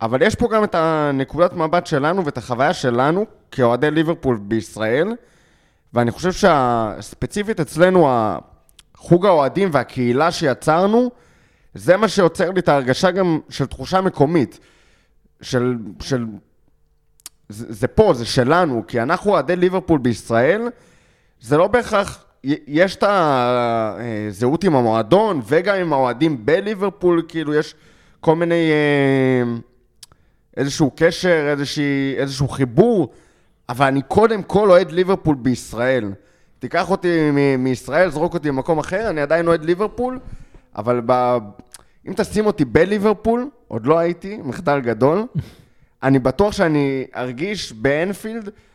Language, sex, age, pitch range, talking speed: Hebrew, male, 20-39, 125-180 Hz, 120 wpm